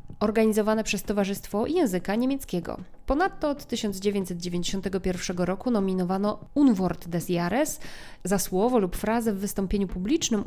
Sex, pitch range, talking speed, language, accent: female, 185-230 Hz, 115 wpm, Polish, native